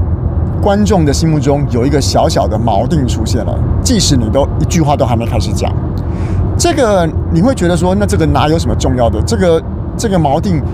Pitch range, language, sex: 90-110 Hz, Chinese, male